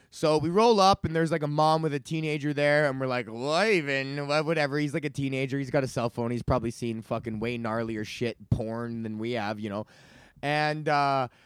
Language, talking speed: English, 225 wpm